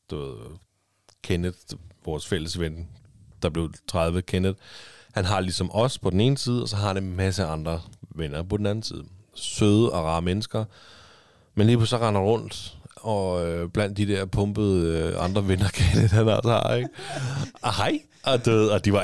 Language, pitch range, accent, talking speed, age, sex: Danish, 90-110 Hz, native, 175 wpm, 30-49, male